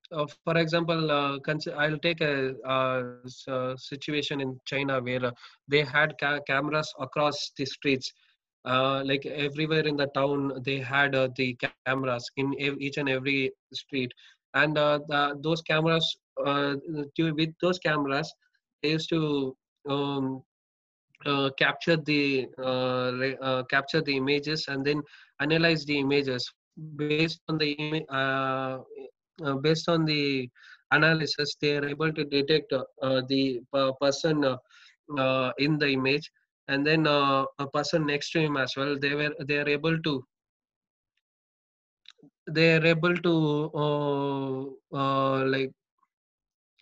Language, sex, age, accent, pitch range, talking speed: English, male, 20-39, Indian, 135-155 Hz, 145 wpm